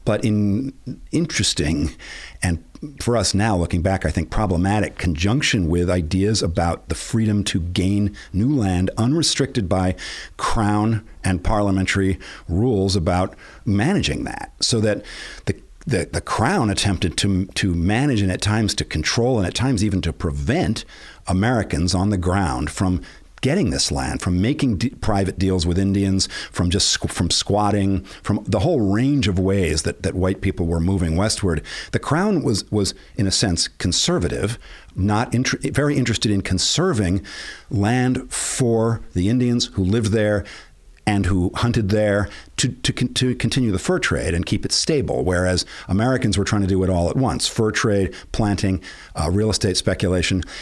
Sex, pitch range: male, 95-115 Hz